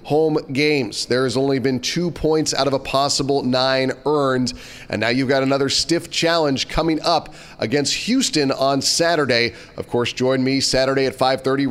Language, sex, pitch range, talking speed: English, male, 130-160 Hz, 170 wpm